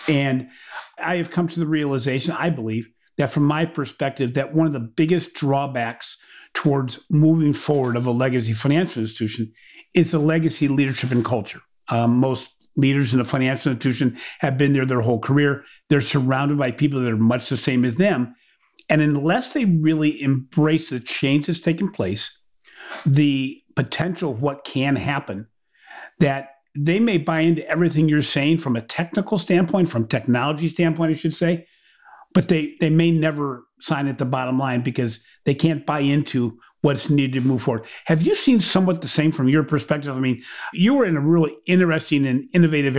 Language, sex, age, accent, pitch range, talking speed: English, male, 50-69, American, 130-160 Hz, 180 wpm